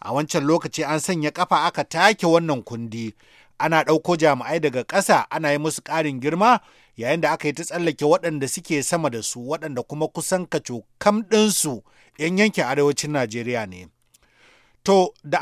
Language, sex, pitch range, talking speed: English, male, 135-175 Hz, 165 wpm